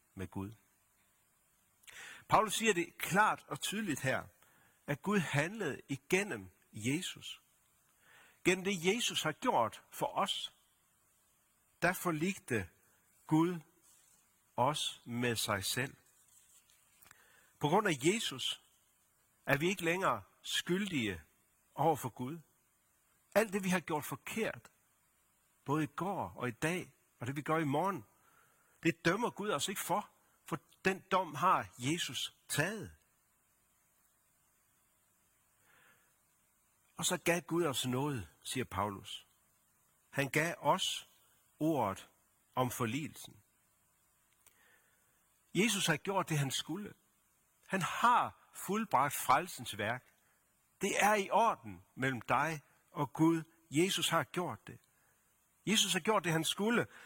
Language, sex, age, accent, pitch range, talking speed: Danish, male, 60-79, native, 120-175 Hz, 120 wpm